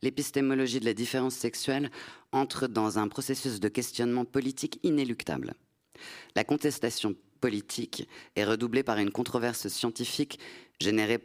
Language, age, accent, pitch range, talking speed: French, 30-49, French, 105-125 Hz, 125 wpm